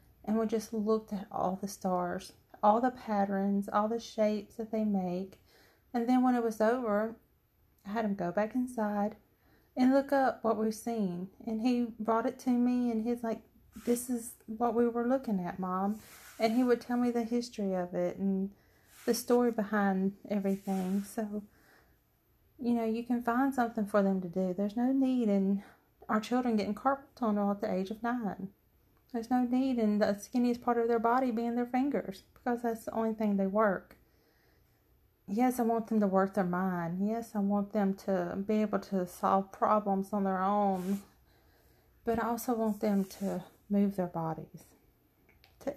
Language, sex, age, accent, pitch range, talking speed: English, female, 30-49, American, 195-235 Hz, 185 wpm